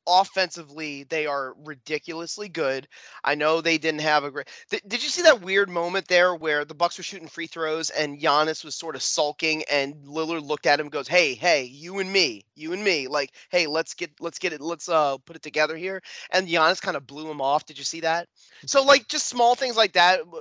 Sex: male